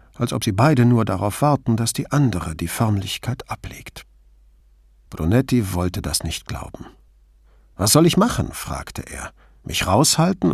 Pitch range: 80-125 Hz